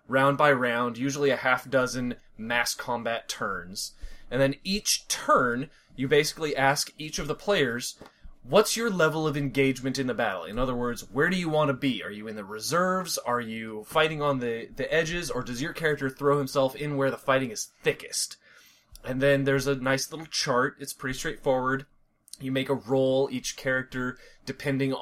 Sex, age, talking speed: male, 20-39, 190 wpm